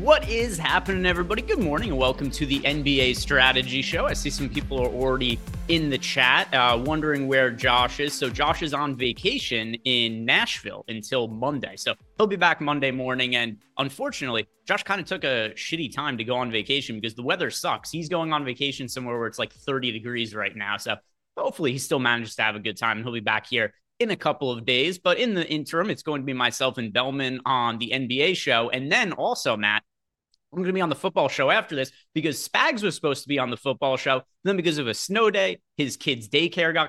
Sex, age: male, 30-49